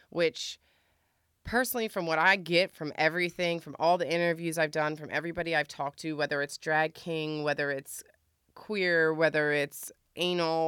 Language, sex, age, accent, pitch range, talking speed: English, female, 30-49, American, 150-175 Hz, 165 wpm